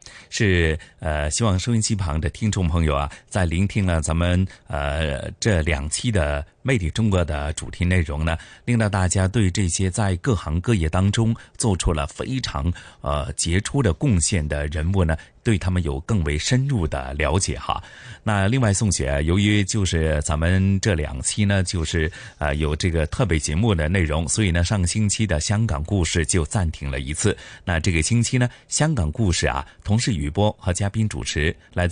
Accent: native